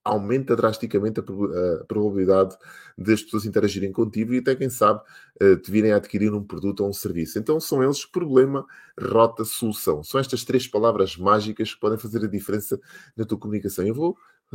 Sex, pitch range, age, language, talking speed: male, 100-120 Hz, 20-39, Portuguese, 175 wpm